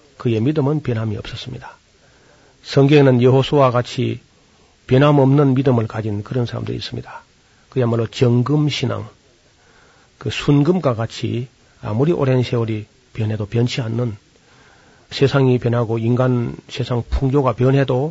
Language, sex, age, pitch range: Korean, male, 40-59, 115-140 Hz